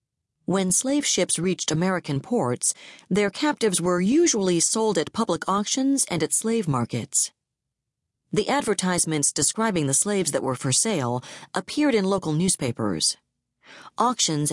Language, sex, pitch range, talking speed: English, female, 140-210 Hz, 130 wpm